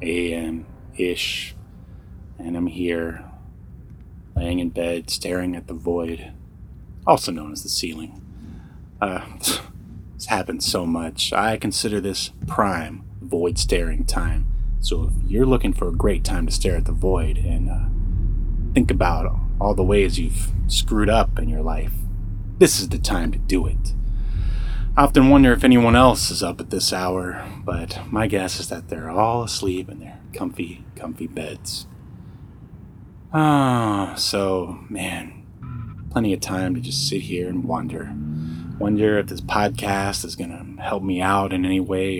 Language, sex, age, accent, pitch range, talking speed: English, male, 30-49, American, 90-110 Hz, 155 wpm